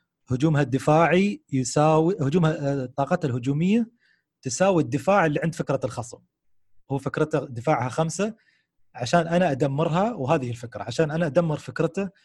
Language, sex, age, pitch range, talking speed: Arabic, male, 30-49, 120-165 Hz, 120 wpm